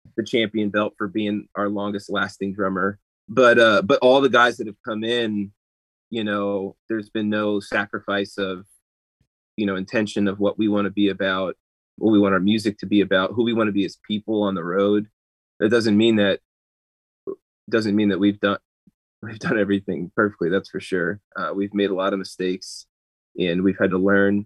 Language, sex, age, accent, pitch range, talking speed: English, male, 20-39, American, 95-110 Hz, 200 wpm